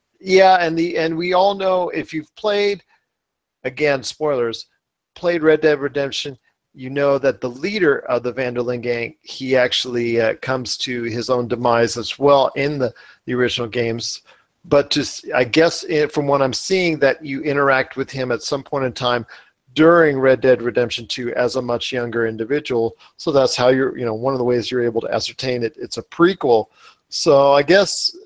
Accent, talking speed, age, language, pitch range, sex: American, 190 wpm, 40-59, English, 125-170 Hz, male